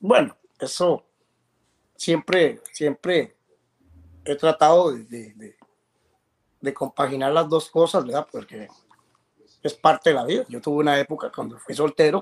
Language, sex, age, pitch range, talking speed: Spanish, male, 30-49, 140-180 Hz, 130 wpm